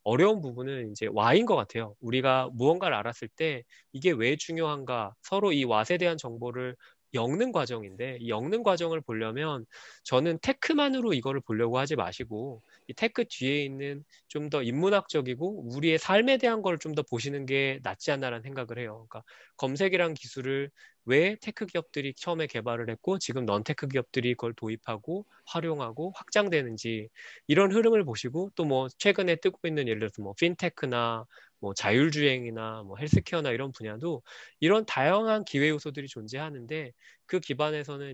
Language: Korean